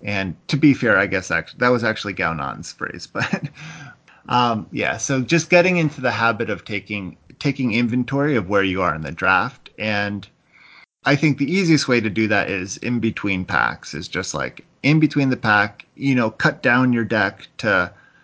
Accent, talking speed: American, 190 wpm